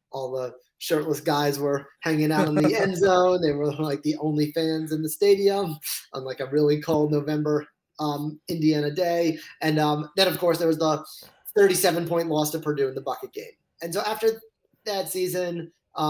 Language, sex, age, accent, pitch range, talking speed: English, male, 20-39, American, 145-170 Hz, 200 wpm